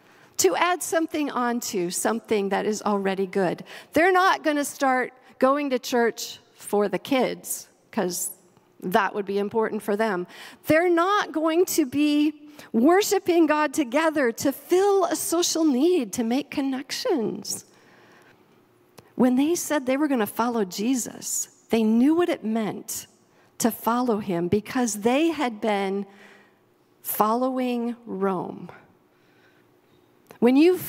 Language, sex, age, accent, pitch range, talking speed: English, female, 50-69, American, 220-300 Hz, 130 wpm